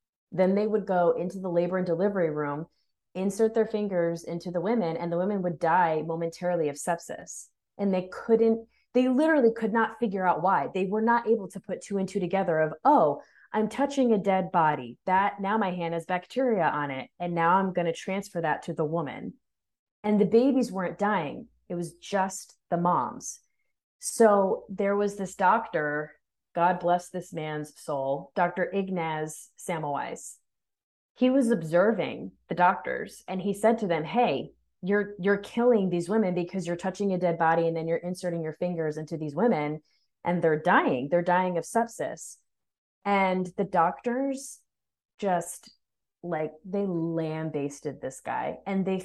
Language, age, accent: English, 20-39, American